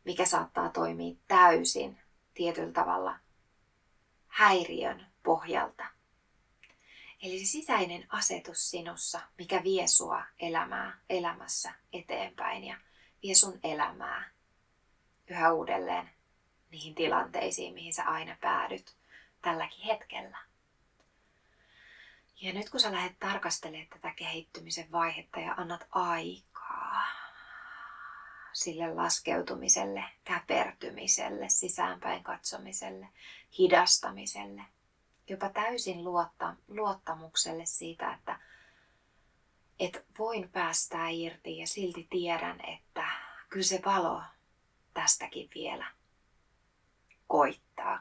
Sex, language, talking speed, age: female, Finnish, 85 wpm, 20-39